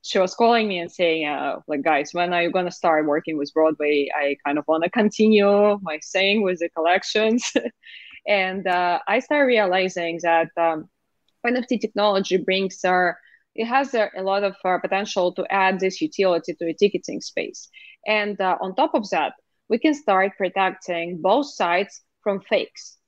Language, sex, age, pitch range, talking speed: English, female, 20-39, 170-210 Hz, 180 wpm